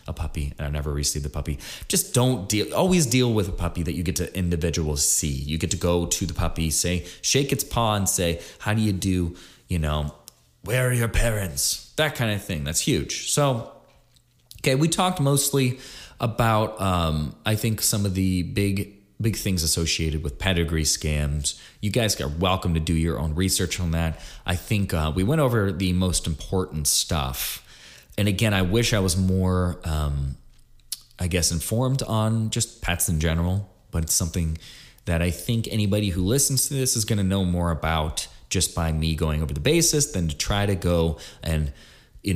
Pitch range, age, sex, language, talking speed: 80-110 Hz, 20-39, male, English, 195 wpm